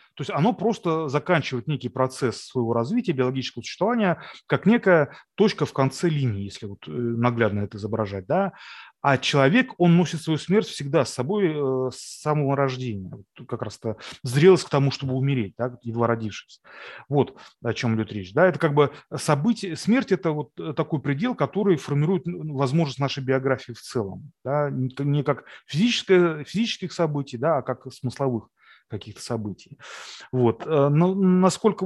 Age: 30-49